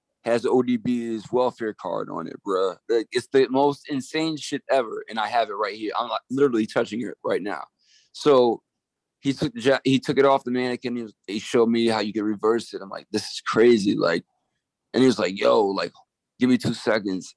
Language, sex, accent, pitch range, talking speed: English, male, American, 110-130 Hz, 220 wpm